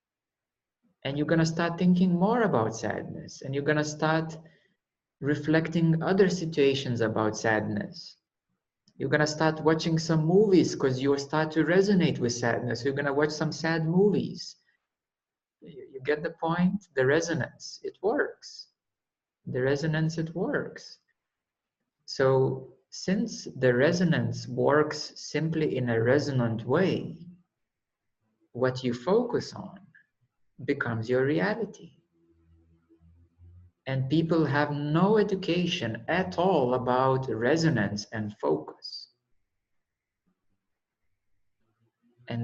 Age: 50-69